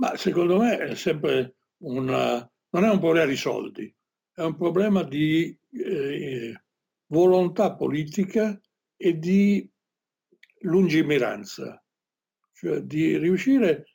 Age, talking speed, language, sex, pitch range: 60-79, 110 wpm, Italian, male, 155-215 Hz